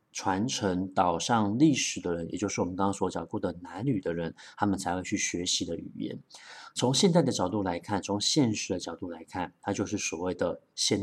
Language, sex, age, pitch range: Chinese, male, 30-49, 100-140 Hz